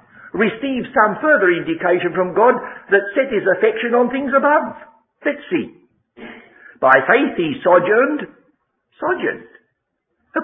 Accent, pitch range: British, 165-260 Hz